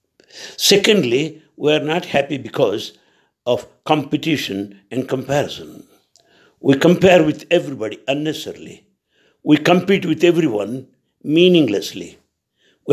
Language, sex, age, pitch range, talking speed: English, male, 60-79, 135-180 Hz, 95 wpm